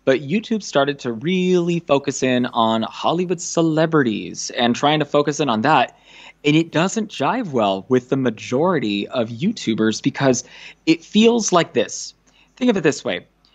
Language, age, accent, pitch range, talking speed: English, 20-39, American, 120-170 Hz, 165 wpm